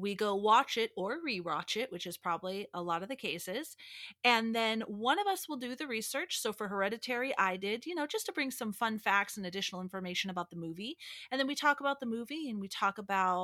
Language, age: English, 30-49